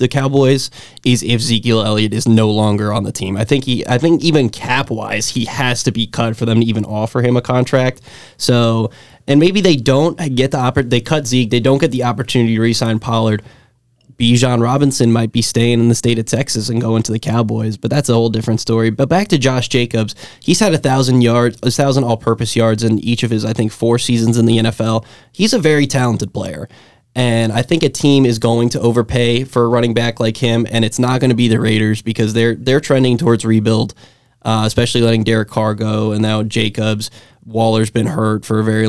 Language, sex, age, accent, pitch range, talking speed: English, male, 20-39, American, 110-125 Hz, 225 wpm